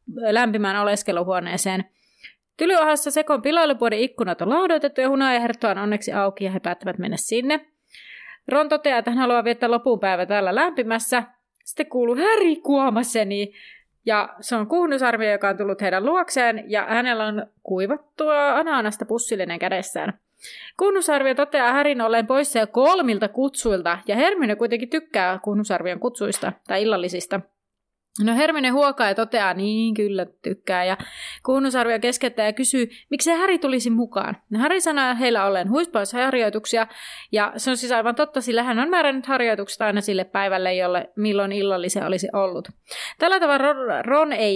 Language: Finnish